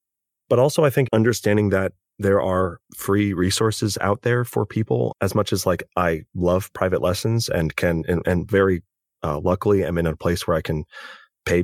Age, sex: 30-49, male